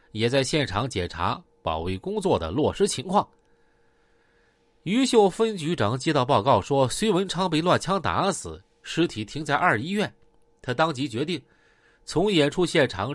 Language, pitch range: Chinese, 100-165 Hz